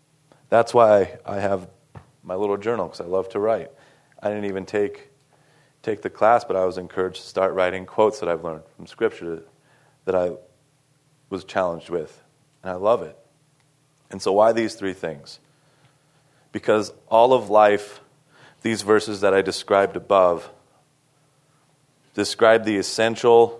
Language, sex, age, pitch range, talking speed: English, male, 30-49, 100-140 Hz, 155 wpm